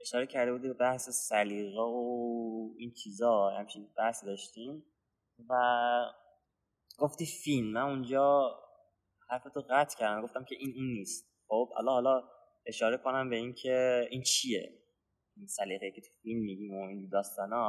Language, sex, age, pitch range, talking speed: English, male, 20-39, 110-145 Hz, 145 wpm